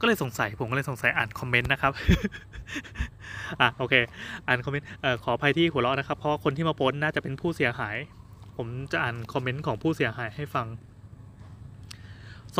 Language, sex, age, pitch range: Thai, male, 20-39, 125-150 Hz